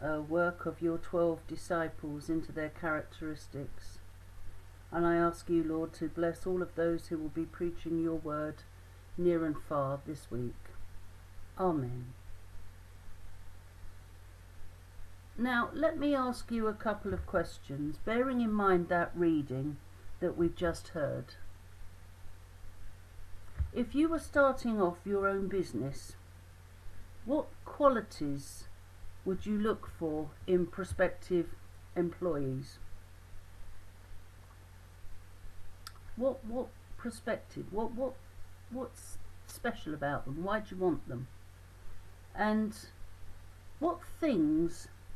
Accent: British